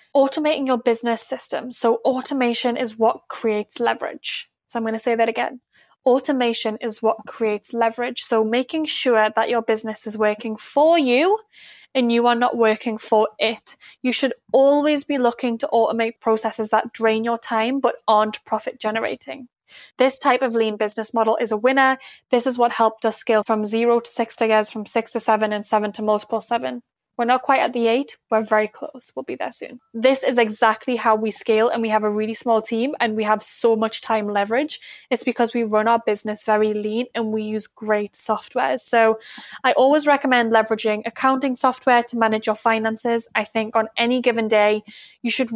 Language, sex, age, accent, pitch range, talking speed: English, female, 10-29, British, 220-245 Hz, 195 wpm